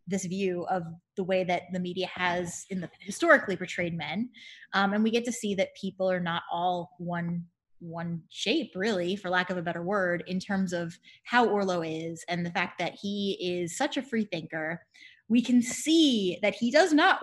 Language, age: English, 20-39